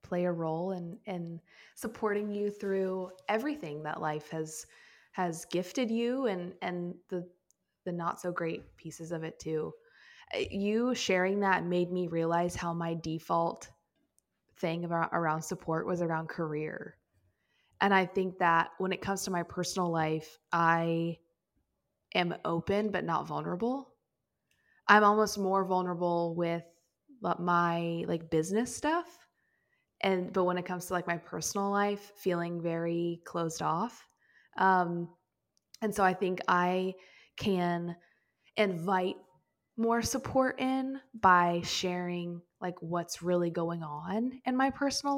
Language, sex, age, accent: English, female, 20-39, American